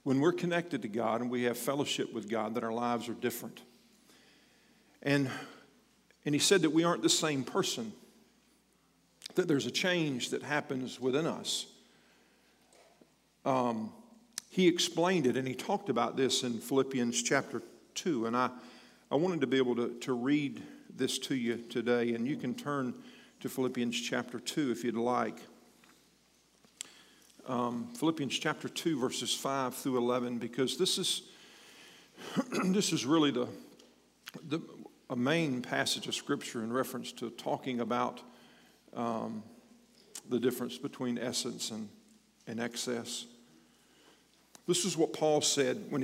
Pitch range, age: 125-165 Hz, 50-69